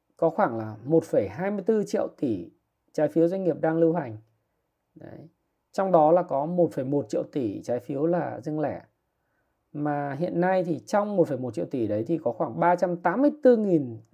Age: 20-39